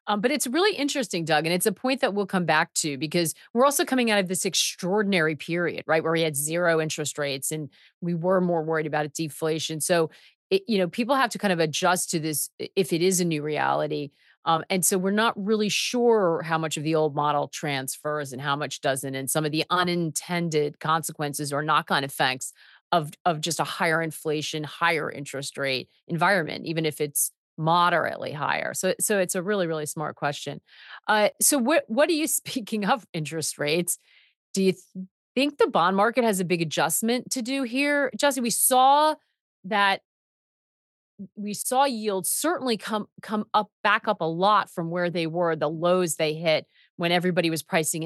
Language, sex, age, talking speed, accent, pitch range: English, female, 40-59, 195 wpm, American, 155-210 Hz